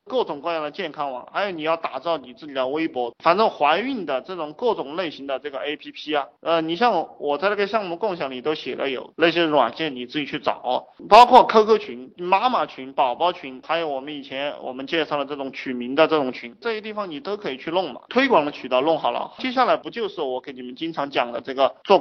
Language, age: Chinese, 20-39